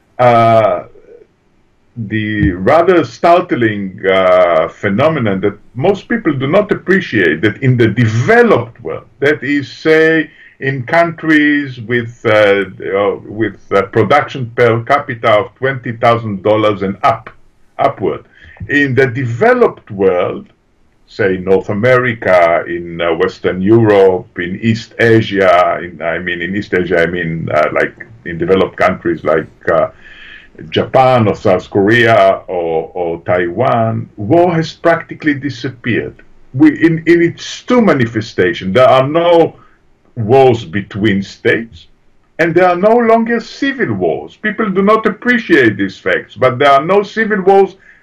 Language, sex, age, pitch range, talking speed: English, male, 50-69, 105-160 Hz, 130 wpm